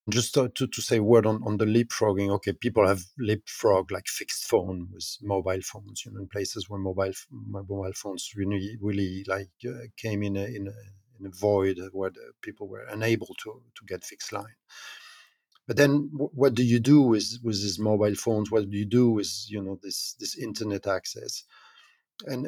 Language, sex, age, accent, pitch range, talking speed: English, male, 50-69, French, 100-125 Hz, 200 wpm